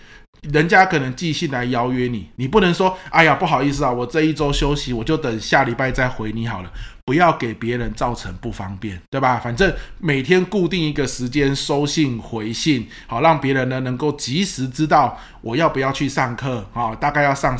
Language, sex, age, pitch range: Chinese, male, 20-39, 115-150 Hz